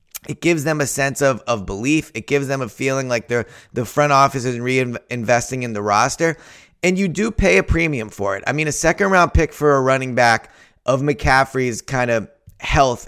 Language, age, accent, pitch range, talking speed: English, 20-39, American, 115-145 Hz, 205 wpm